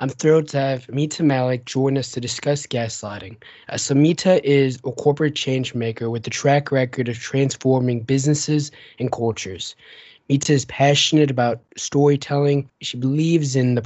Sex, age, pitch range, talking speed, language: male, 20-39, 120-135 Hz, 160 wpm, English